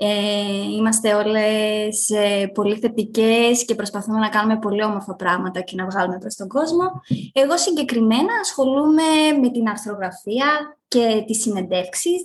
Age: 20-39